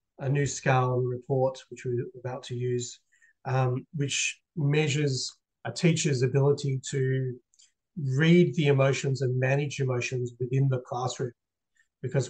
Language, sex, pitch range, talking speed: English, male, 125-145 Hz, 130 wpm